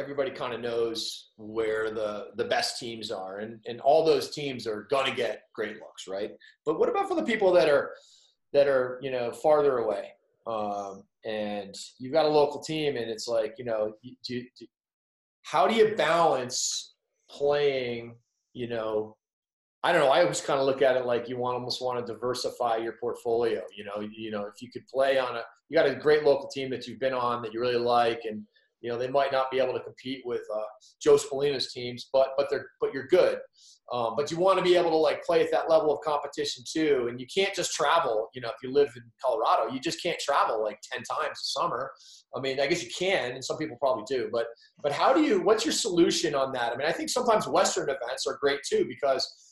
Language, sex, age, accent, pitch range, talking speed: English, male, 30-49, American, 120-160 Hz, 230 wpm